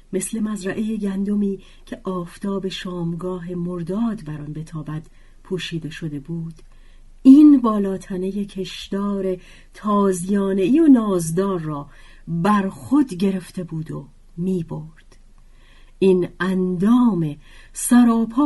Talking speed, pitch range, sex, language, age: 100 wpm, 160-215 Hz, female, Persian, 40-59